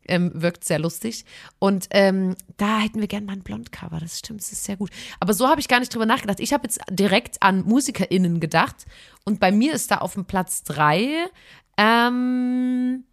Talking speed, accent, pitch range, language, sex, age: 200 wpm, German, 185-270 Hz, German, female, 30-49